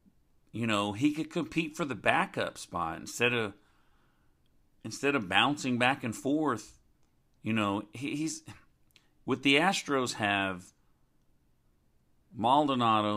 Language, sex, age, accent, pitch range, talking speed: English, male, 50-69, American, 90-145 Hz, 120 wpm